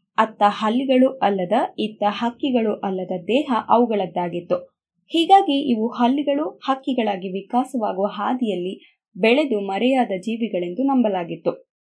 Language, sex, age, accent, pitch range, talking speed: Kannada, female, 20-39, native, 195-265 Hz, 90 wpm